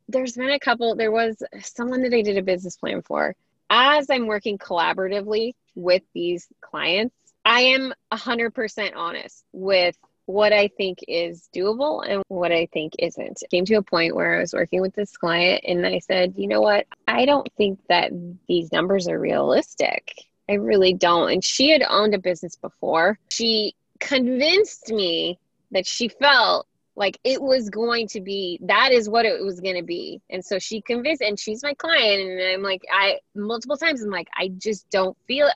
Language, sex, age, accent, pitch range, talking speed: English, female, 20-39, American, 185-255 Hz, 190 wpm